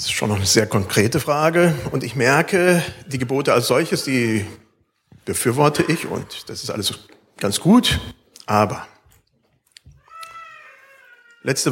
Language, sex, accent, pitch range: German, male, German, 115-170 Hz